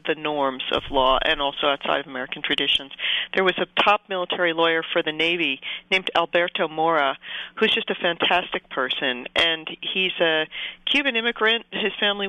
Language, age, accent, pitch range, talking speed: English, 50-69, American, 155-200 Hz, 165 wpm